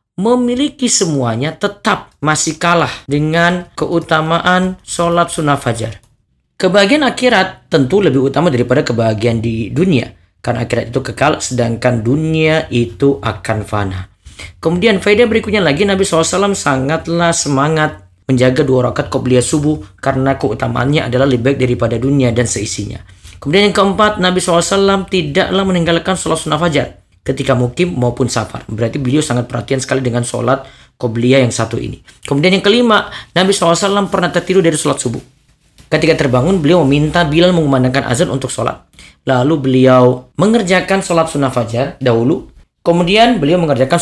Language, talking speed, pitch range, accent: Indonesian, 140 wpm, 125-175 Hz, native